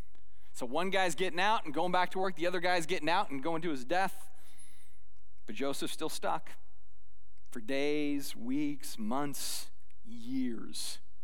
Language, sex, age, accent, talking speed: English, male, 30-49, American, 155 wpm